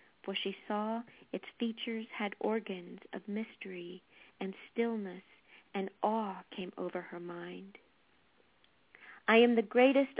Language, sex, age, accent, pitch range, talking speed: English, female, 50-69, American, 195-245 Hz, 125 wpm